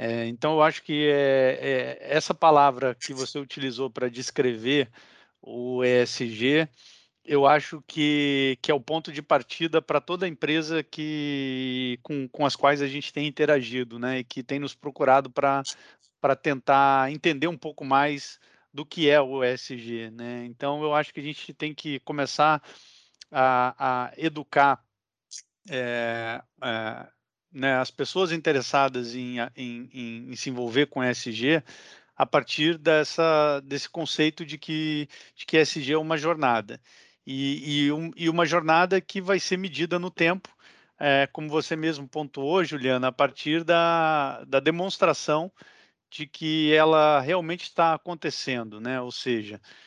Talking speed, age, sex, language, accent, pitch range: 150 wpm, 50-69, male, Portuguese, Brazilian, 130-160 Hz